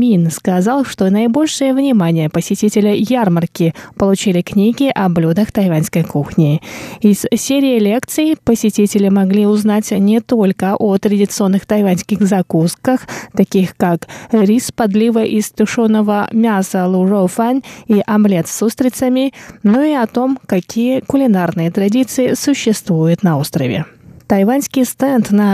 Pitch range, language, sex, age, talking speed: 185-240 Hz, Russian, female, 20-39, 120 wpm